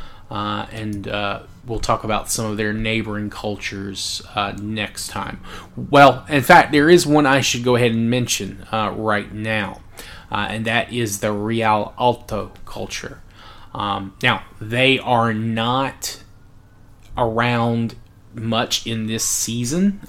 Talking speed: 140 wpm